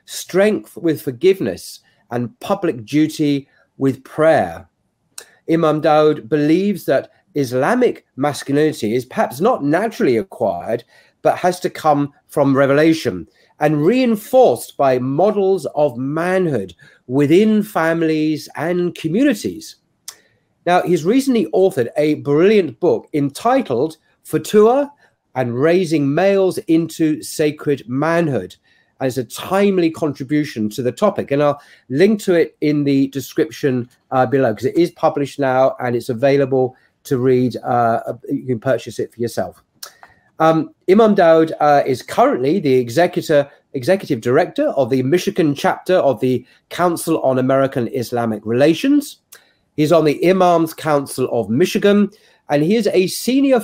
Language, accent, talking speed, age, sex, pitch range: English, British, 130 wpm, 40-59, male, 130-180 Hz